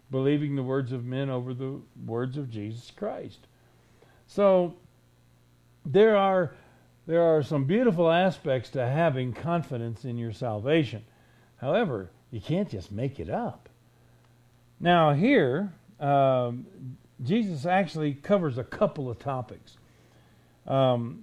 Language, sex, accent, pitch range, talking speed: English, male, American, 115-165 Hz, 120 wpm